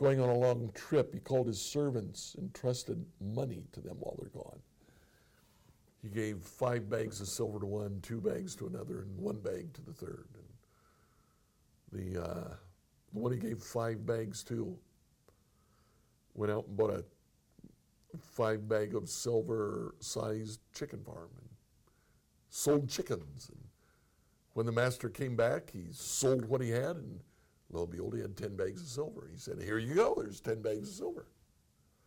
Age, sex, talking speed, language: 60-79, male, 170 wpm, English